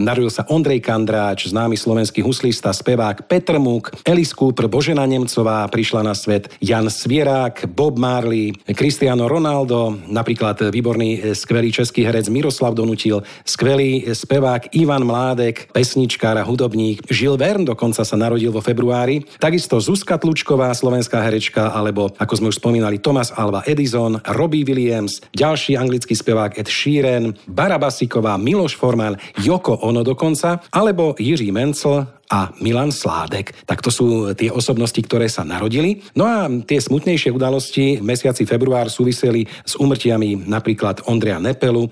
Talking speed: 140 wpm